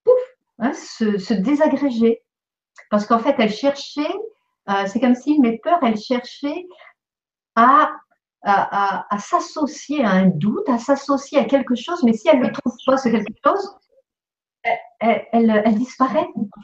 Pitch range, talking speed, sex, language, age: 190-260 Hz, 150 wpm, female, French, 50-69